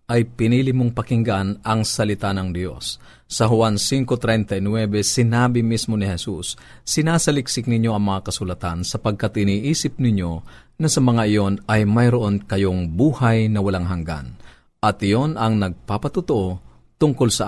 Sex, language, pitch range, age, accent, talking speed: male, Filipino, 95-115 Hz, 50-69, native, 135 wpm